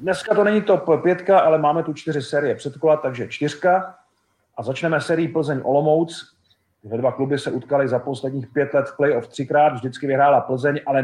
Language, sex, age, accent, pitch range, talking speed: Czech, male, 40-59, native, 130-160 Hz, 185 wpm